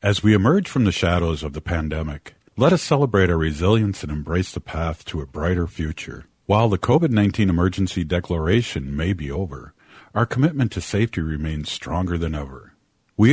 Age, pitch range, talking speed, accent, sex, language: 50-69, 85-115 Hz, 175 wpm, American, male, English